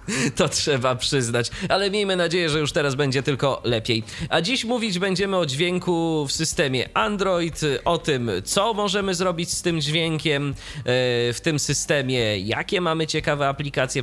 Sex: male